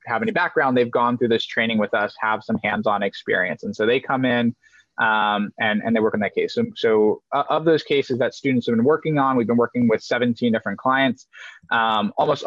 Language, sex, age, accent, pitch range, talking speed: English, male, 20-39, American, 115-150 Hz, 225 wpm